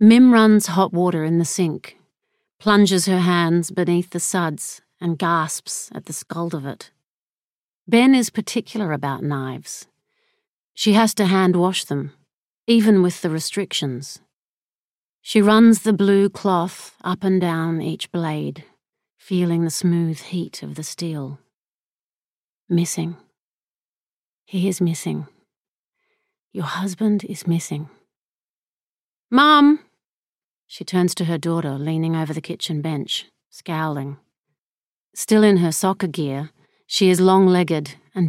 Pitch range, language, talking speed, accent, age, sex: 160-210 Hz, English, 125 wpm, Australian, 40-59, female